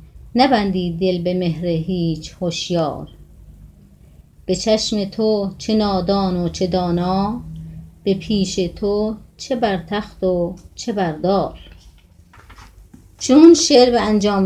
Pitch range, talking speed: 170-205 Hz, 110 wpm